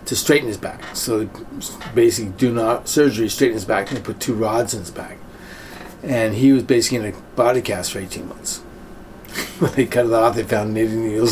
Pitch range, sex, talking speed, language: 110-140 Hz, male, 210 wpm, English